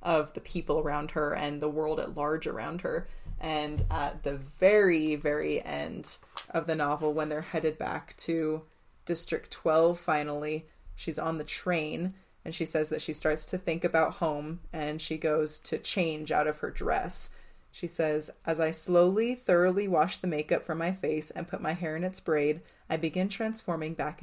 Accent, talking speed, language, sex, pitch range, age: American, 185 wpm, English, female, 155-175 Hz, 20-39